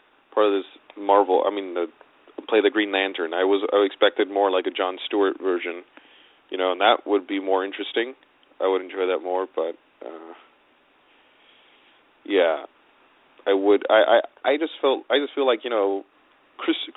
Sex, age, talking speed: male, 30-49, 180 wpm